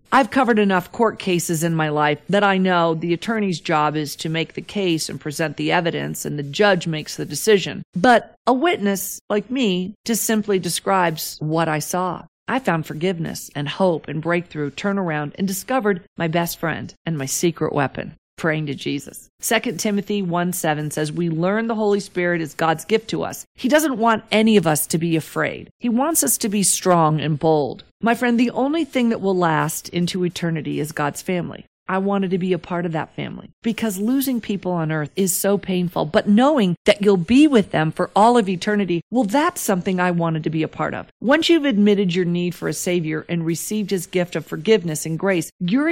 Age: 40-59